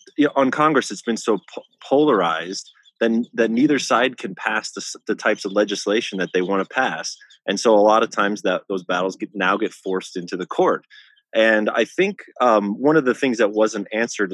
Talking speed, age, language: 220 wpm, 30-49, English